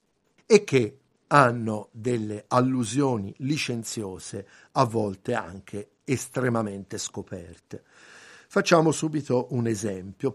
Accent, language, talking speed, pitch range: native, Italian, 85 wpm, 110-145 Hz